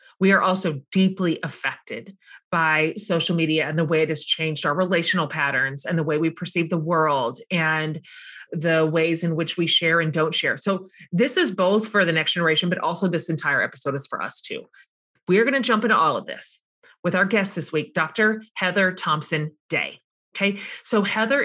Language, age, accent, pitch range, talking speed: English, 30-49, American, 165-200 Hz, 200 wpm